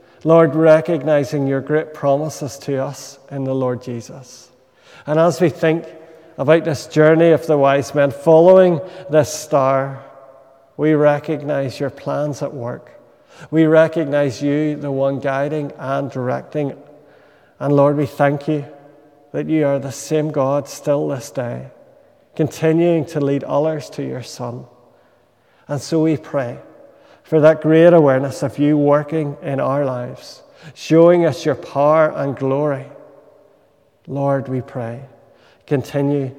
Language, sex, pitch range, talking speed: English, male, 135-155 Hz, 140 wpm